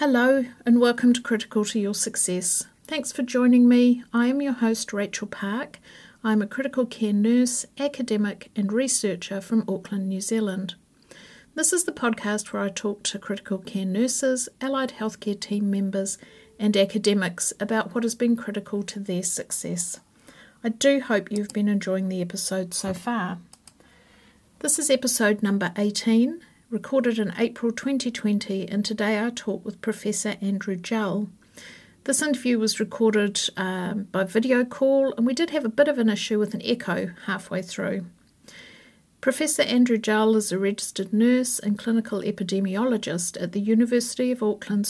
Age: 50-69